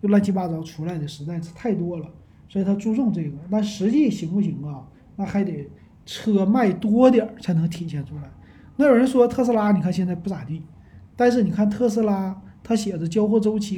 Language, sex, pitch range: Chinese, male, 165-220 Hz